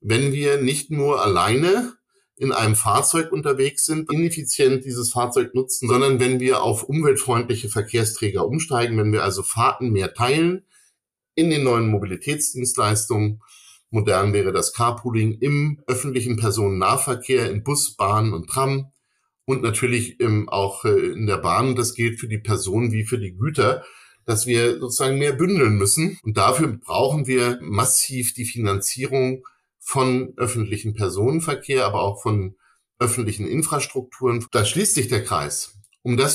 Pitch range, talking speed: 110-135 Hz, 140 wpm